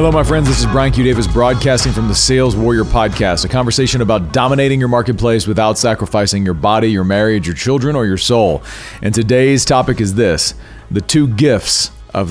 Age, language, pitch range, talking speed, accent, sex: 40-59, English, 105-130 Hz, 195 wpm, American, male